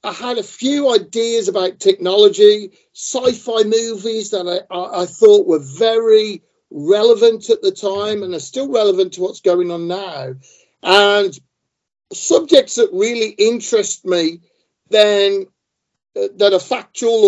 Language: German